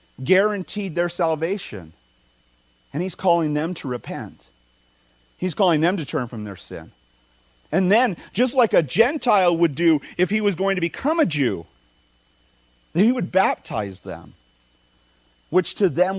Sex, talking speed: male, 150 wpm